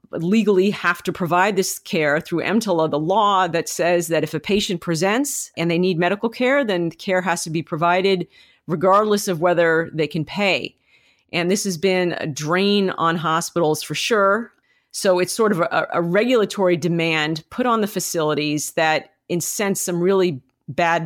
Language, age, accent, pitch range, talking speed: English, 40-59, American, 165-195 Hz, 175 wpm